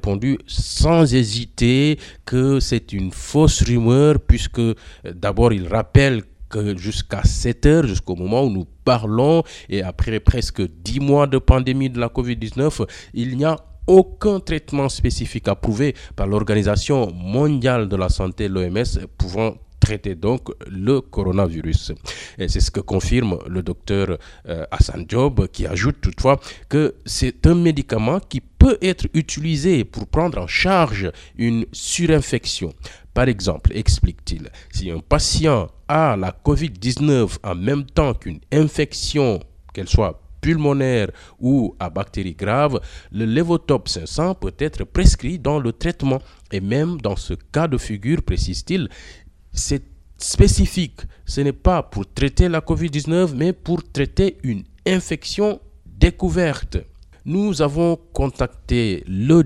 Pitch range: 95-140 Hz